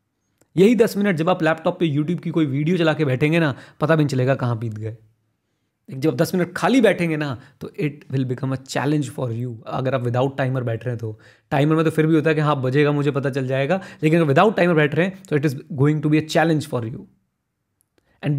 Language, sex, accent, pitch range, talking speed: Hindi, male, native, 130-165 Hz, 245 wpm